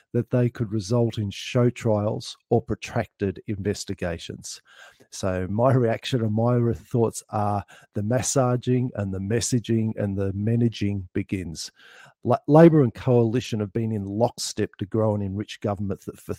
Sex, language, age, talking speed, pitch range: male, English, 50-69, 145 wpm, 105-125 Hz